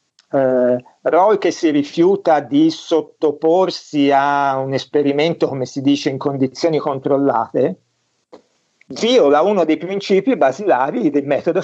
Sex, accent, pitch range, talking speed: male, native, 130-165 Hz, 120 wpm